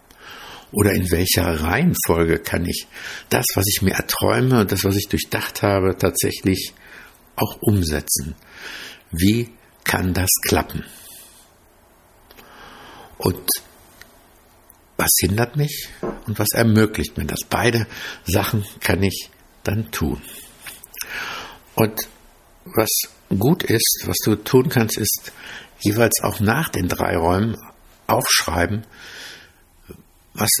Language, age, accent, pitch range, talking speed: German, 60-79, German, 85-105 Hz, 110 wpm